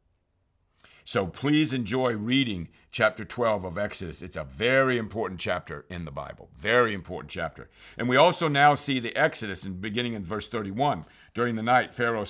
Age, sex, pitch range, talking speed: 50-69, male, 100-130 Hz, 165 wpm